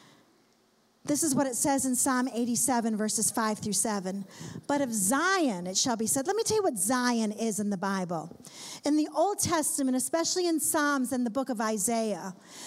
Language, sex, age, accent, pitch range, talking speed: English, female, 50-69, American, 230-315 Hz, 195 wpm